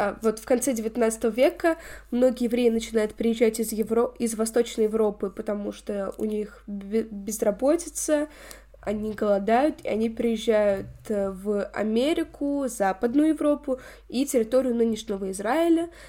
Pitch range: 215-260 Hz